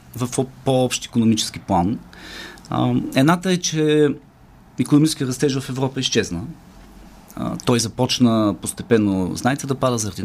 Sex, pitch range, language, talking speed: male, 110-140 Hz, Bulgarian, 110 wpm